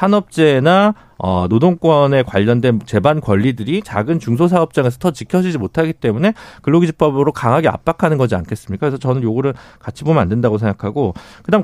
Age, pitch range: 40-59, 120-185 Hz